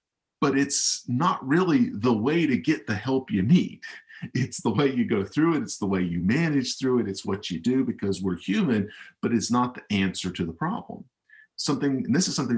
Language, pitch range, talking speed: English, 95-135 Hz, 215 wpm